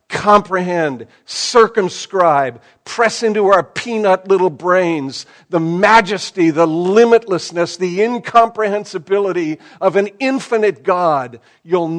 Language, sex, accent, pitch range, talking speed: English, male, American, 170-235 Hz, 95 wpm